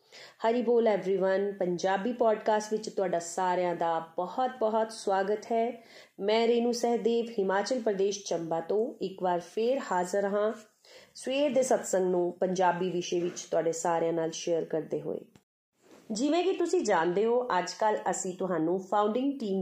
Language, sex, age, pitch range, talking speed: Punjabi, female, 30-49, 175-240 Hz, 155 wpm